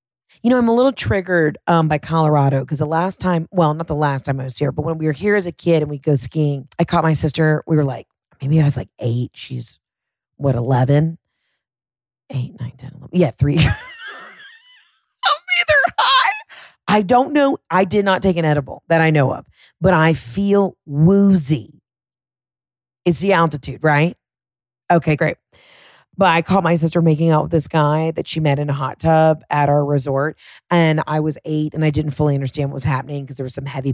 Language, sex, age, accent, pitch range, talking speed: English, female, 40-59, American, 140-170 Hz, 200 wpm